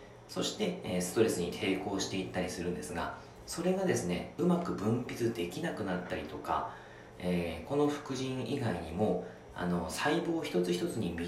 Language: Japanese